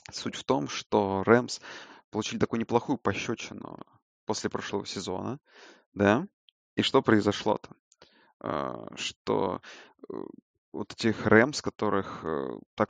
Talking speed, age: 100 wpm, 20-39